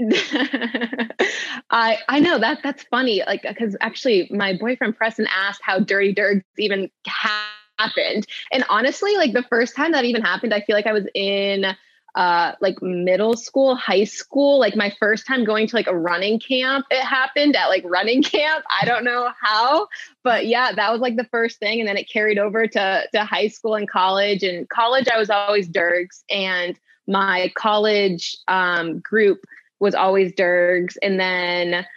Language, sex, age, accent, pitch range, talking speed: English, female, 20-39, American, 195-255 Hz, 175 wpm